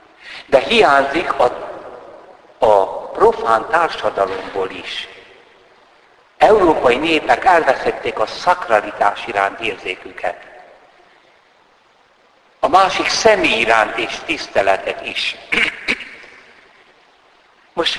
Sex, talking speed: male, 75 wpm